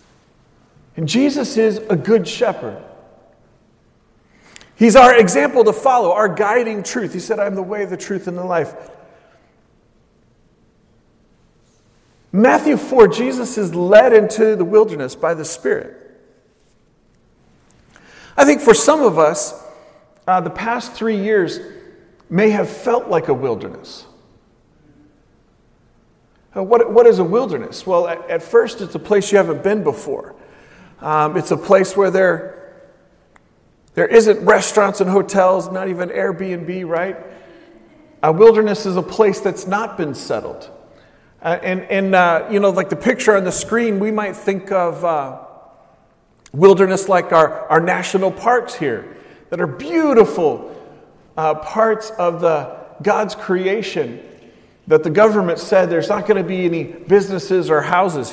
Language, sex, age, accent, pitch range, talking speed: English, male, 40-59, American, 180-220 Hz, 140 wpm